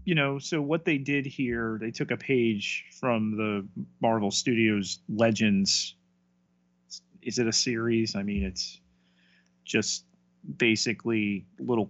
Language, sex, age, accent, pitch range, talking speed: English, male, 30-49, American, 90-120 Hz, 130 wpm